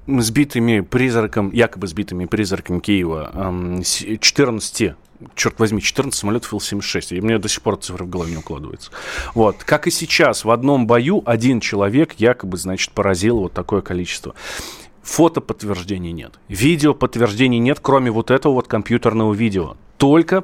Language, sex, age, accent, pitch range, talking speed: Russian, male, 30-49, native, 105-135 Hz, 145 wpm